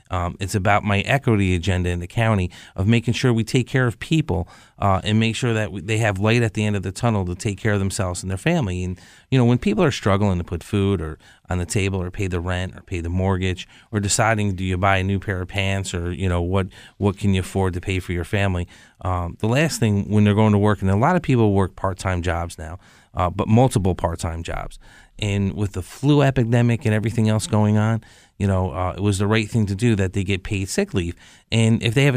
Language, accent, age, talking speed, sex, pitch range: English, American, 30-49, 255 wpm, male, 95-115 Hz